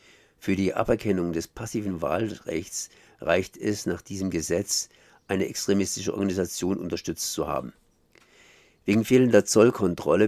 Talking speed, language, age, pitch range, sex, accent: 115 wpm, German, 50-69, 90-105 Hz, male, German